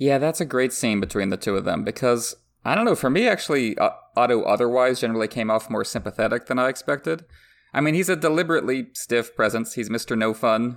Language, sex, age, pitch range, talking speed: English, male, 30-49, 110-130 Hz, 210 wpm